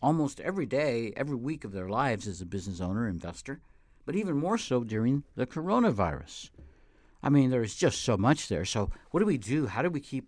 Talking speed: 215 wpm